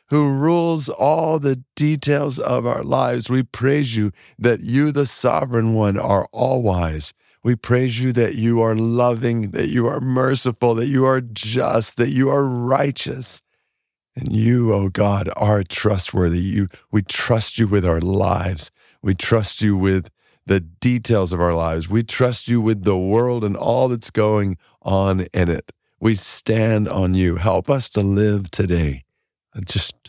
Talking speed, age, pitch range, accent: 165 wpm, 50-69, 90-115 Hz, American